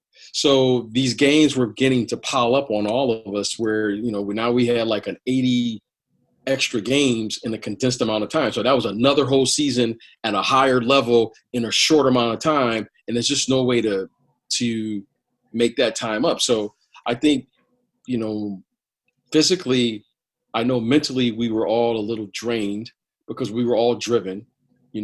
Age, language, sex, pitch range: 40-59, English, male, 110-135 Hz